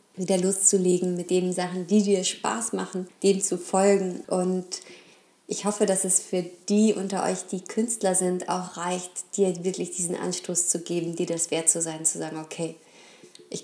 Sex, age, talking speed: female, 20-39, 190 wpm